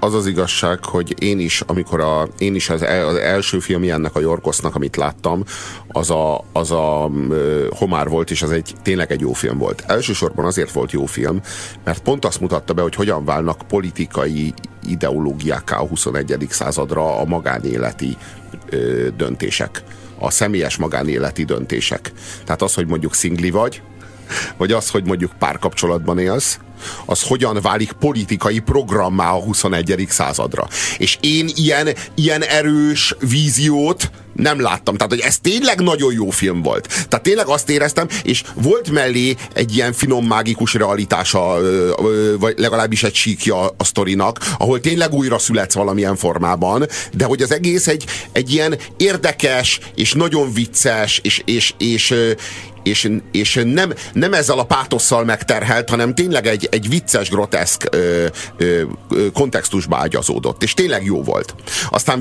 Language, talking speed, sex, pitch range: Hungarian, 150 wpm, male, 90-130 Hz